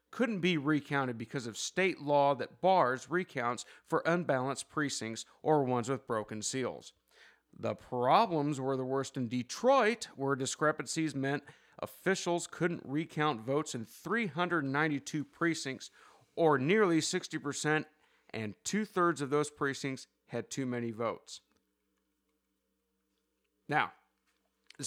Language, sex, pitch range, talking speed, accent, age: English, male, 135-180 Hz, 120 wpm, American, 40-59